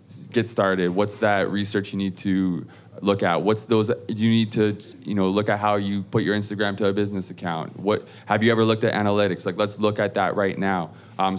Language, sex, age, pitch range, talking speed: English, male, 20-39, 95-105 Hz, 225 wpm